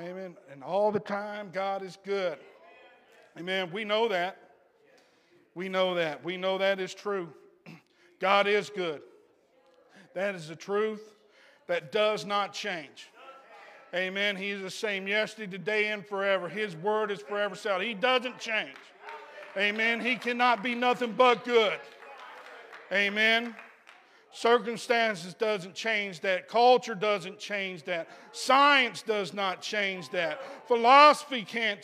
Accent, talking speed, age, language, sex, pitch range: American, 135 wpm, 50-69, English, male, 200-250 Hz